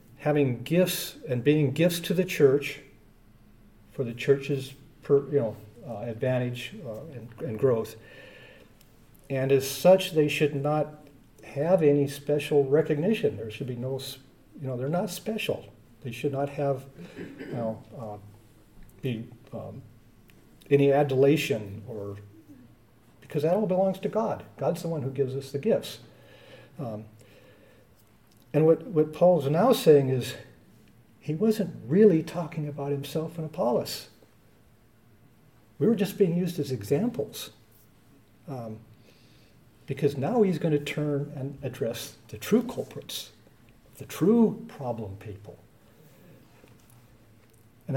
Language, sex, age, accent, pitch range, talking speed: English, male, 50-69, American, 115-150 Hz, 130 wpm